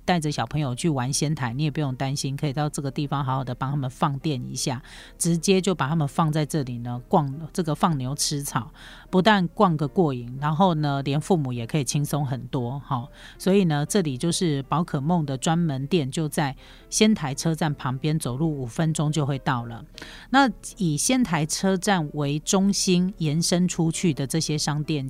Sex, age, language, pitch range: female, 40-59, Chinese, 140-175 Hz